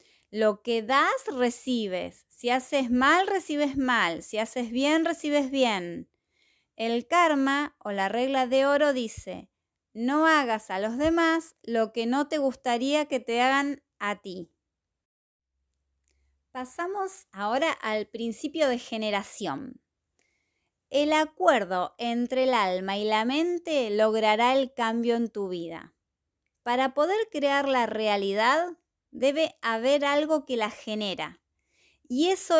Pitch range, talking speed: 210-295 Hz, 130 wpm